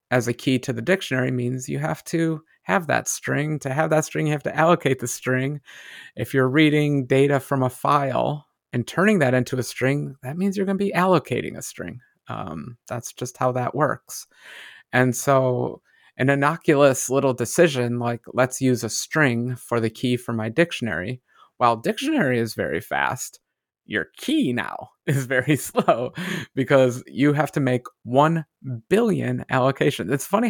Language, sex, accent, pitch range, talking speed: English, male, American, 120-150 Hz, 175 wpm